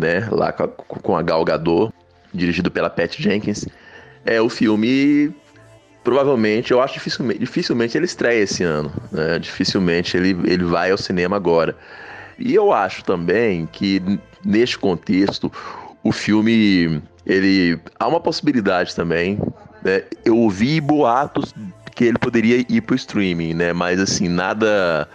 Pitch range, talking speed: 90-115 Hz, 140 wpm